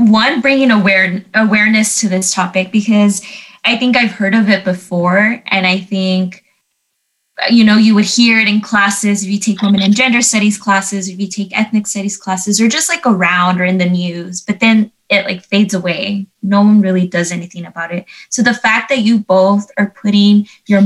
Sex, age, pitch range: female, 20-39, 190-225 Hz